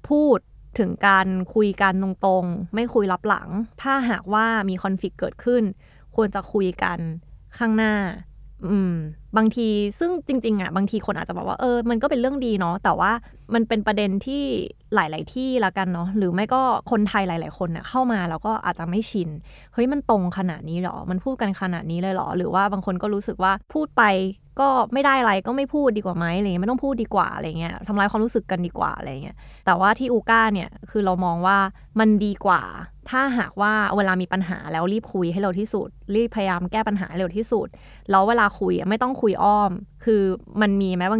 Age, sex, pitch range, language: 20-39, female, 185-225 Hz, Thai